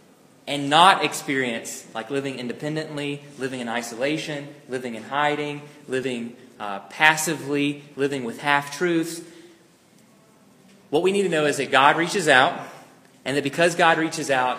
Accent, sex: American, male